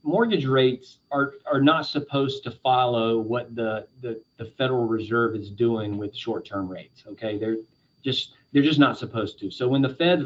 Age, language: 30-49, English